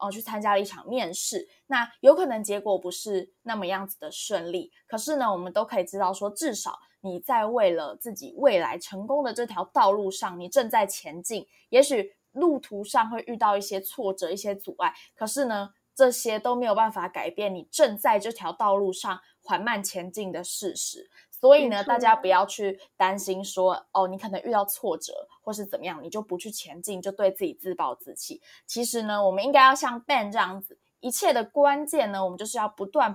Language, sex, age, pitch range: Chinese, female, 20-39, 190-255 Hz